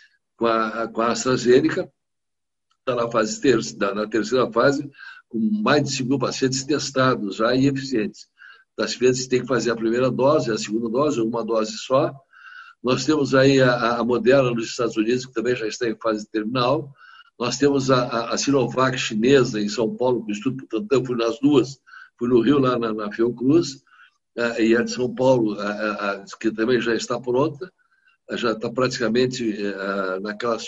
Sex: male